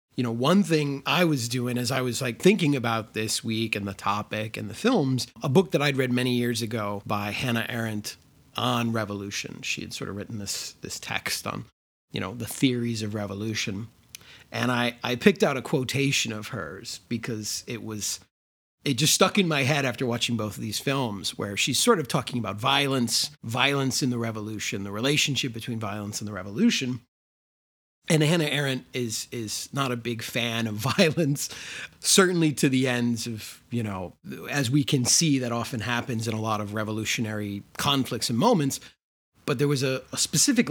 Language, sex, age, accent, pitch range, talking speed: English, male, 30-49, American, 110-140 Hz, 190 wpm